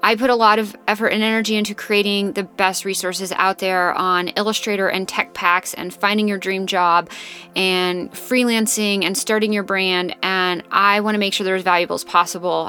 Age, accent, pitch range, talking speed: 20-39, American, 180-230 Hz, 200 wpm